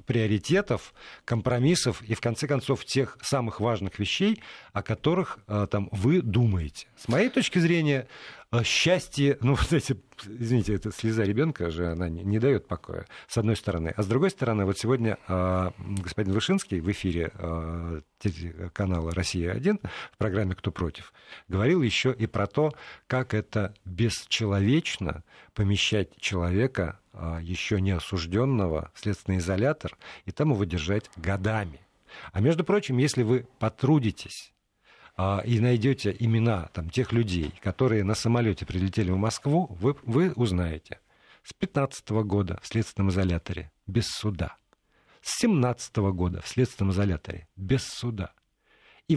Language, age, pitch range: Russian, 50-69, 95-130 Hz